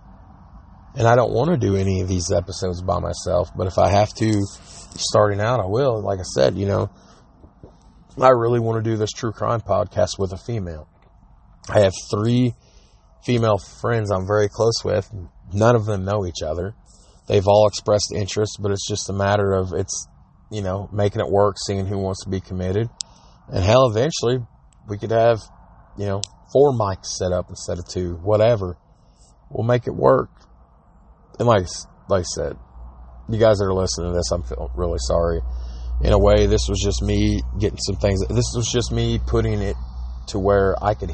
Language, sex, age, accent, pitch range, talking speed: English, male, 30-49, American, 85-105 Hz, 190 wpm